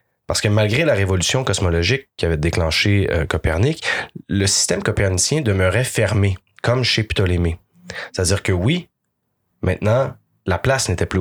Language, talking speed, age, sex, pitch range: French, 145 wpm, 30-49, male, 90-120 Hz